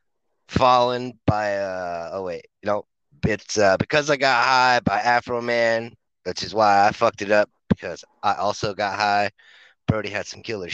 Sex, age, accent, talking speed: male, 30-49, American, 180 wpm